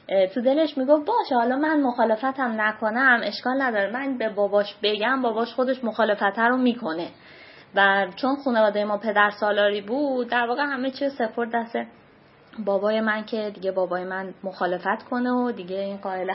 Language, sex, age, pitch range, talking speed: Persian, female, 20-39, 195-255 Hz, 160 wpm